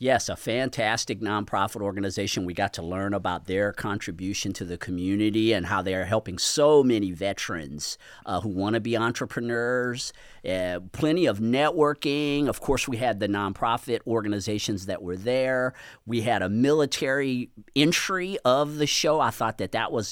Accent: American